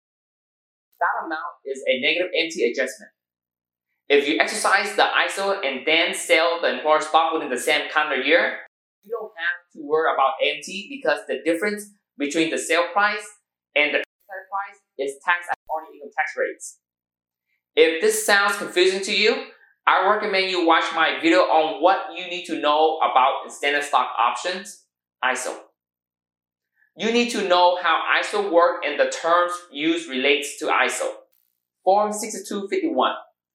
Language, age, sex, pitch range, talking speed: English, 20-39, male, 155-210 Hz, 155 wpm